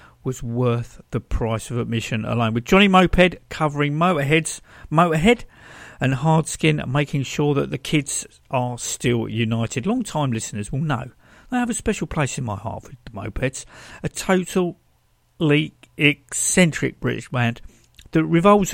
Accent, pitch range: British, 120-170 Hz